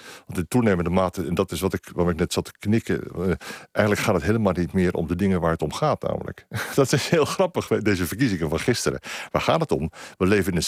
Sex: male